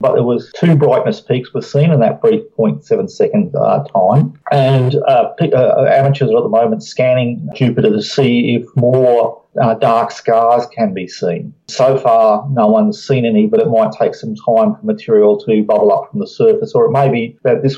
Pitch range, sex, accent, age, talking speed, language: 115-175 Hz, male, Australian, 40-59, 205 wpm, English